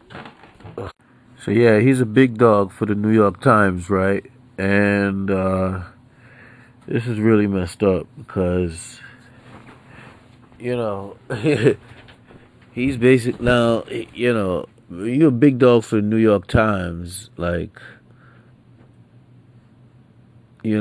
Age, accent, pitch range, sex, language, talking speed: 30-49, American, 95-120 Hz, male, English, 110 wpm